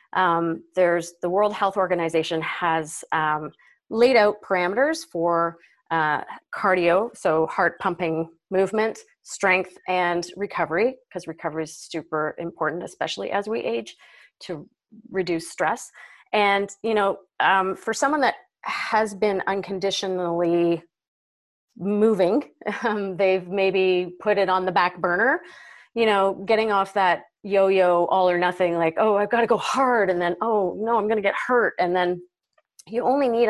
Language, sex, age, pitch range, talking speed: English, female, 30-49, 175-220 Hz, 150 wpm